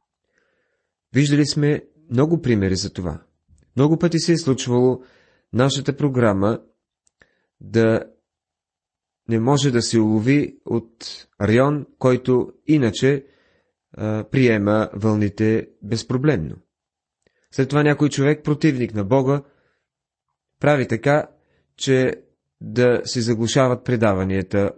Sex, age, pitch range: male, 30-49, 105-145 Hz